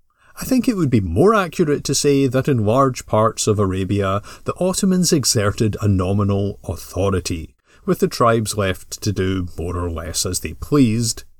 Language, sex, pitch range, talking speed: English, male, 95-130 Hz, 175 wpm